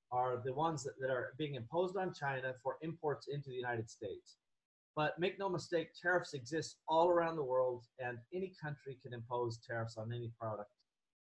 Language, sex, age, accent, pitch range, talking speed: English, male, 30-49, American, 120-170 Hz, 185 wpm